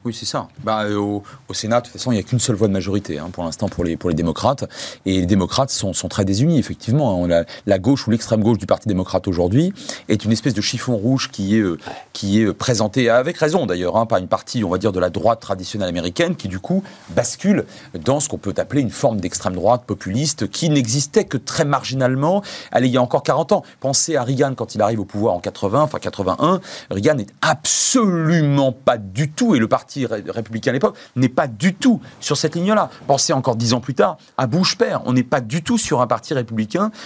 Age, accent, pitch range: 30-49, French, 105-145 Hz